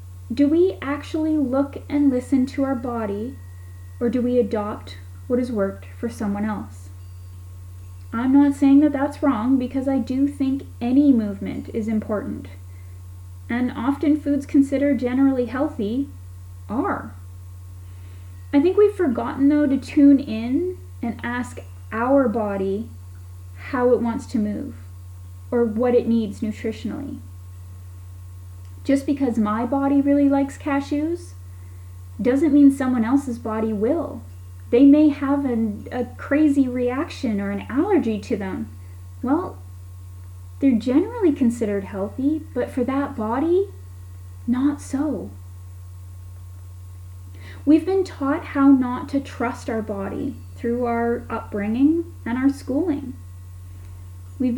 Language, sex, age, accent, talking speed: English, female, 10-29, American, 125 wpm